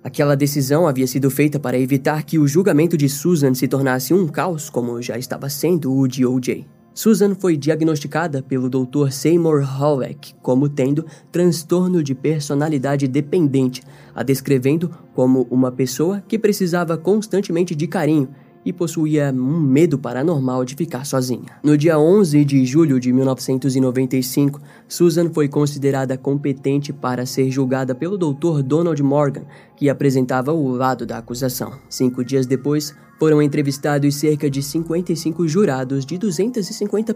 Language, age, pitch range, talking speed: Portuguese, 10-29, 130-170 Hz, 145 wpm